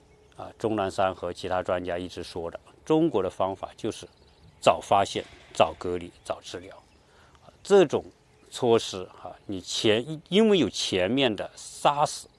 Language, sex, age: Chinese, male, 50-69